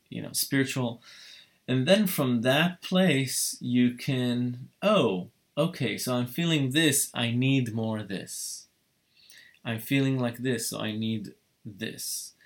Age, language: 20-39, English